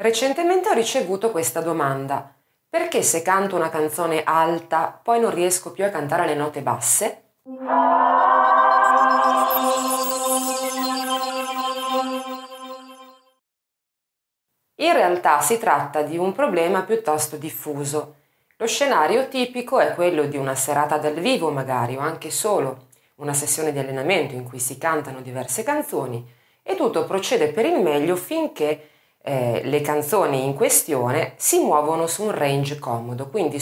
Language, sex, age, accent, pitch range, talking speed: Italian, female, 30-49, native, 135-225 Hz, 125 wpm